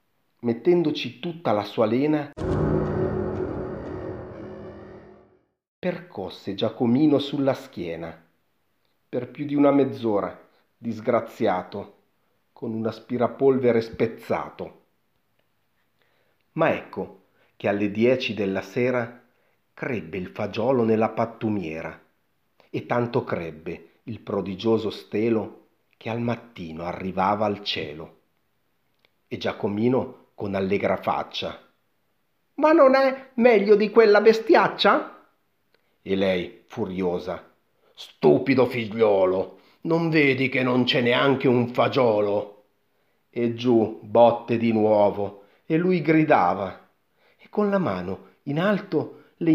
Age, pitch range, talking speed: 40-59, 105-160 Hz, 100 wpm